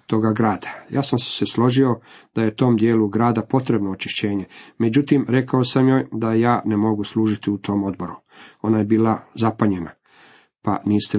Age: 40-59